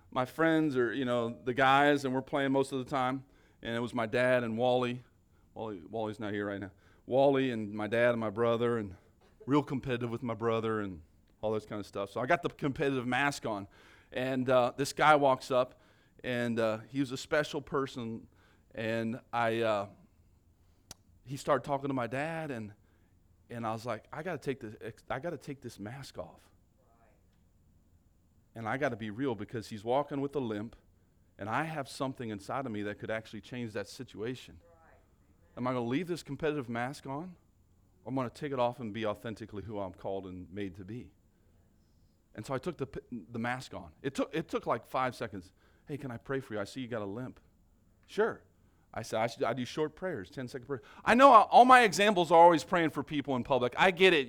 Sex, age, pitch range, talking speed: male, 40-59, 100-140 Hz, 210 wpm